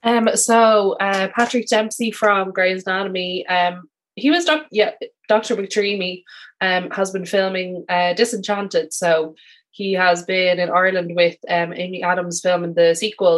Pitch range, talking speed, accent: 170-195 Hz, 155 wpm, Irish